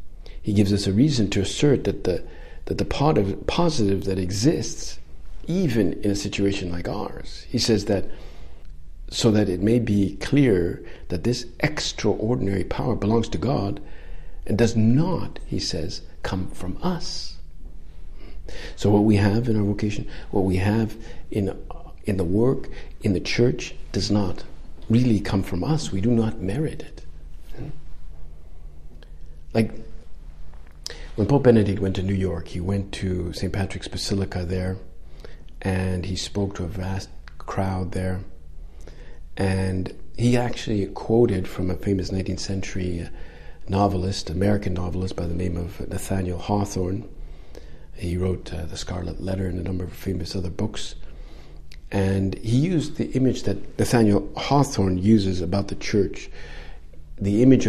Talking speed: 145 wpm